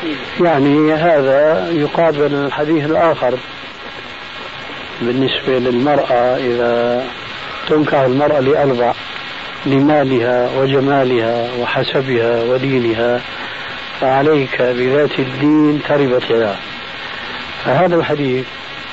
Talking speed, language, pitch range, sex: 65 wpm, Arabic, 125-150 Hz, male